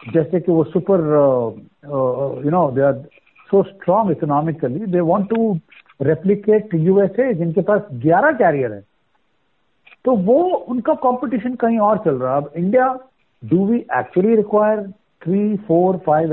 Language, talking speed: Hindi, 140 wpm